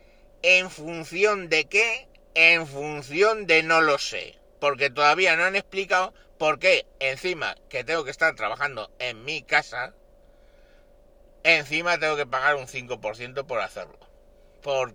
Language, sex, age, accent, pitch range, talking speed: Spanish, male, 60-79, Spanish, 140-190 Hz, 140 wpm